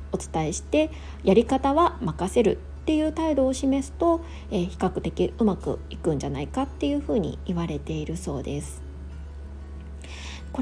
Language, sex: Japanese, female